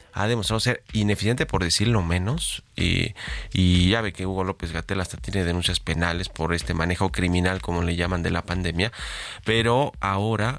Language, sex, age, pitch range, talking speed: Spanish, male, 30-49, 90-110 Hz, 175 wpm